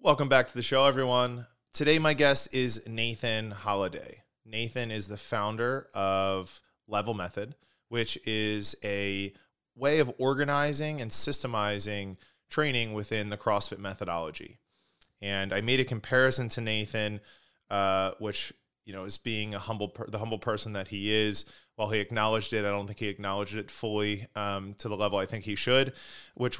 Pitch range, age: 100-120 Hz, 20-39